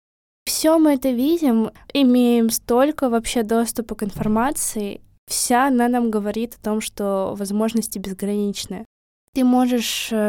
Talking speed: 120 wpm